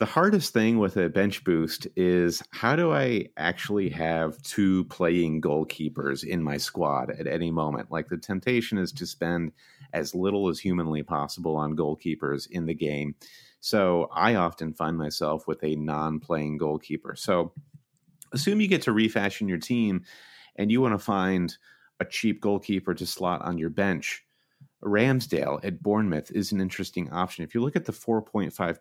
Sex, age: male, 30-49